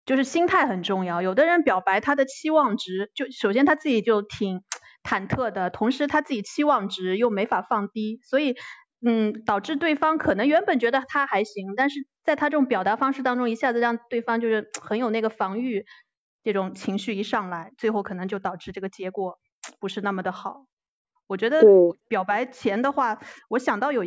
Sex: female